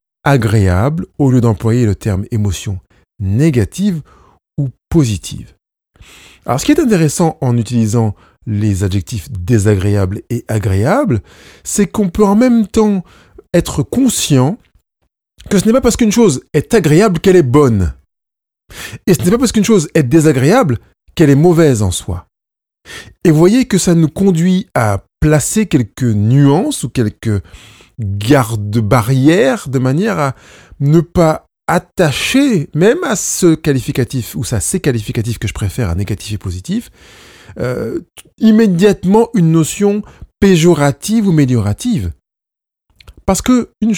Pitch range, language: 110-185 Hz, French